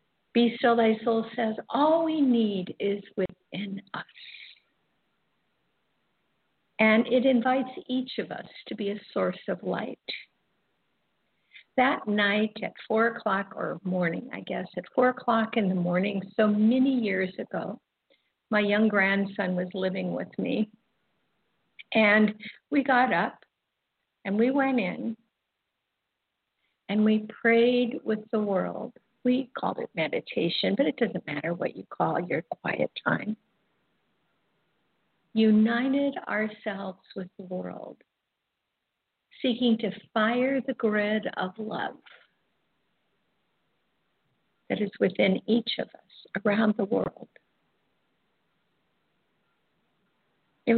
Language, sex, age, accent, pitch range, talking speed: English, female, 50-69, American, 195-240 Hz, 115 wpm